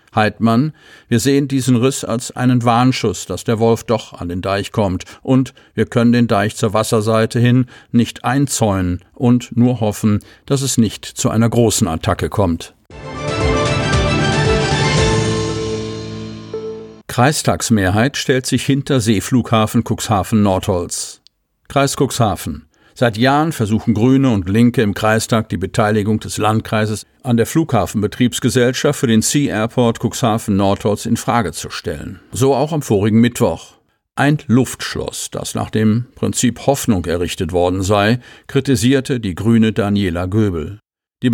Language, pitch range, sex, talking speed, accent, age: German, 110-125 Hz, male, 130 wpm, German, 50-69